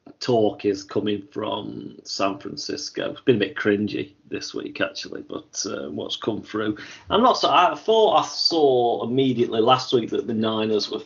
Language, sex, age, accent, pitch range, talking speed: English, male, 30-49, British, 100-120 Hz, 180 wpm